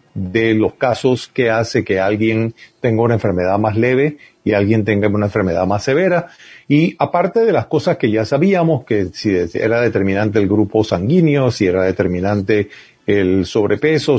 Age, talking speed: 40-59, 165 wpm